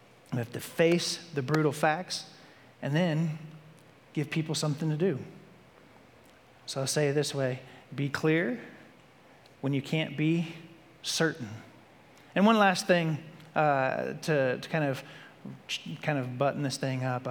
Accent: American